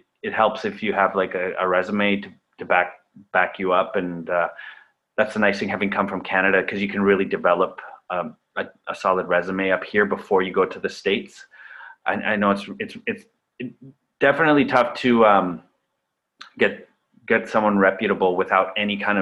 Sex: male